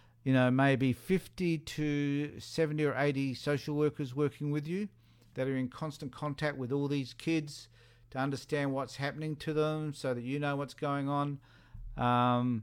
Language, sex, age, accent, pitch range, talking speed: English, male, 50-69, Australian, 115-145 Hz, 170 wpm